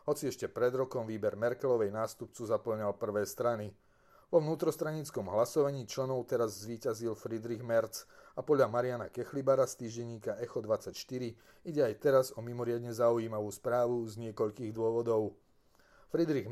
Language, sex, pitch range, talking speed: Slovak, male, 115-135 Hz, 135 wpm